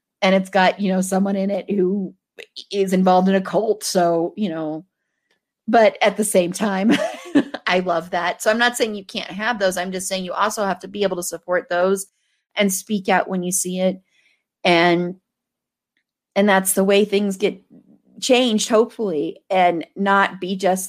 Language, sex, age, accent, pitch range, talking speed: English, female, 30-49, American, 170-200 Hz, 185 wpm